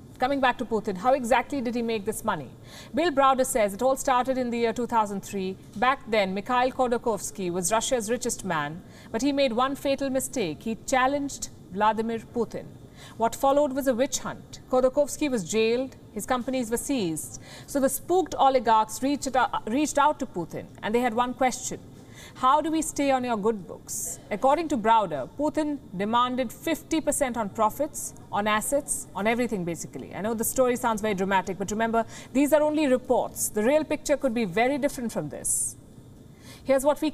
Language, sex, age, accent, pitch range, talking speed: English, female, 50-69, Indian, 215-270 Hz, 180 wpm